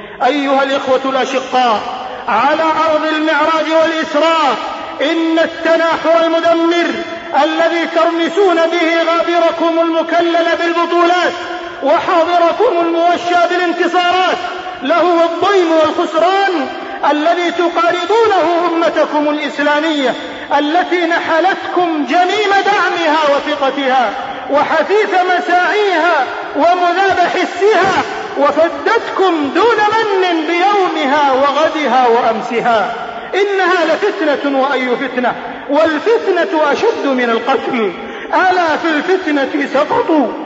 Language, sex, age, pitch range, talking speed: Arabic, male, 30-49, 305-370 Hz, 80 wpm